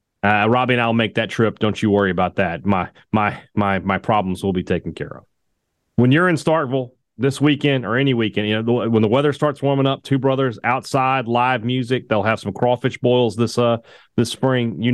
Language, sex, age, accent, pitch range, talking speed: English, male, 30-49, American, 100-135 Hz, 220 wpm